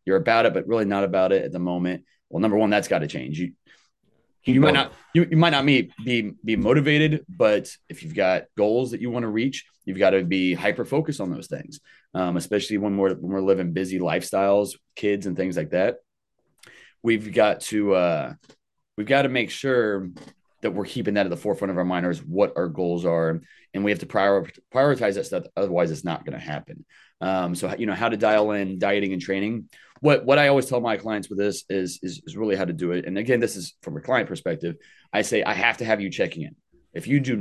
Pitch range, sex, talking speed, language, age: 95-125 Hz, male, 230 wpm, English, 30-49